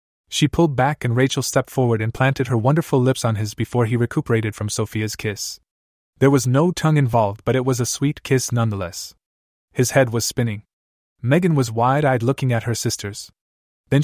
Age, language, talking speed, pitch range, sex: 20-39, English, 190 wpm, 110-140 Hz, male